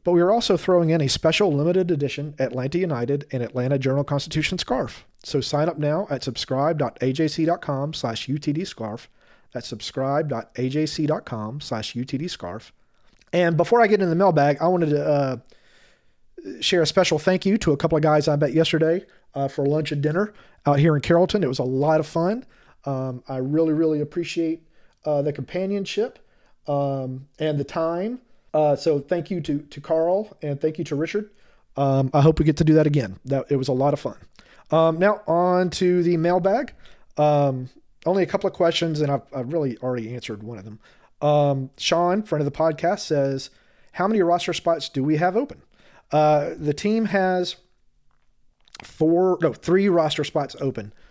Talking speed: 175 wpm